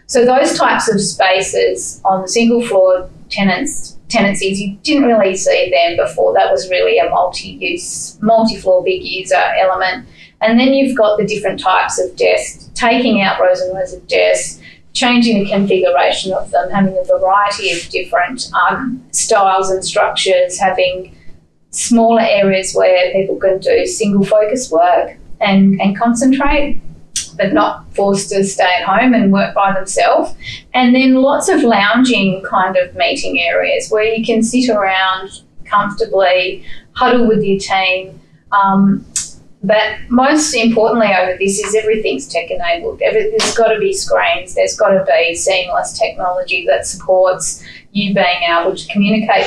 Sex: female